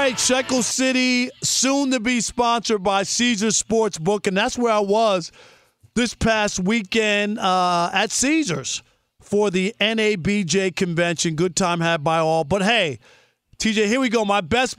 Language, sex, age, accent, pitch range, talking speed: English, male, 40-59, American, 190-240 Hz, 155 wpm